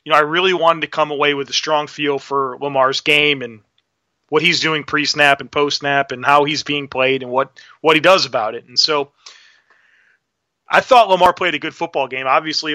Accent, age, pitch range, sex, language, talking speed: American, 30-49, 140-170 Hz, male, English, 210 wpm